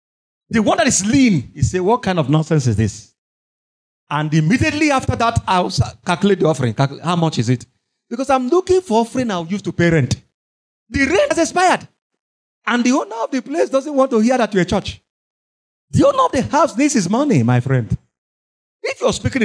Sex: male